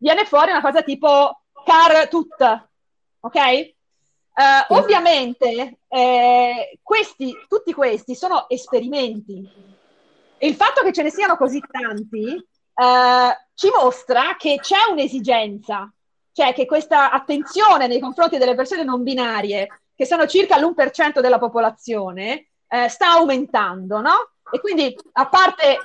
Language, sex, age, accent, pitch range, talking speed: Italian, female, 30-49, native, 245-315 Hz, 130 wpm